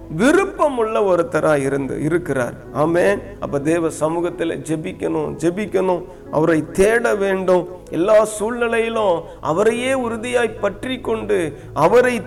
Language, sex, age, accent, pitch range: Tamil, male, 50-69, native, 155-220 Hz